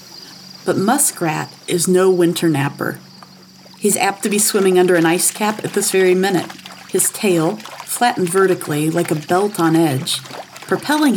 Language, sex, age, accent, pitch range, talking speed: English, female, 40-59, American, 165-210 Hz, 155 wpm